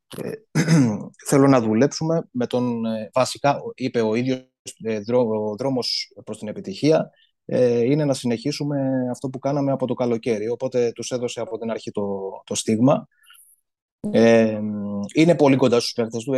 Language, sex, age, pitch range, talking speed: Greek, male, 30-49, 115-150 Hz, 140 wpm